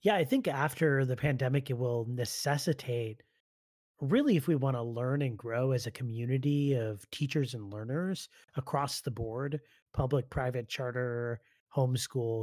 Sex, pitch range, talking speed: male, 115-145 Hz, 150 wpm